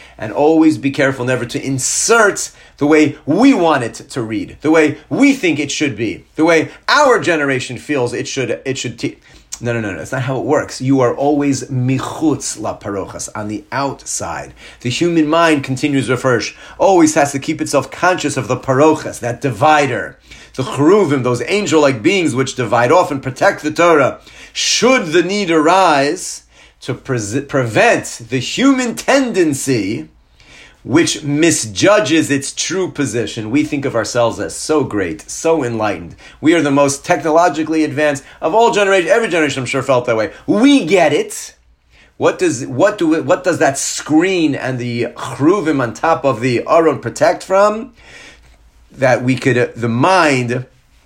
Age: 40-59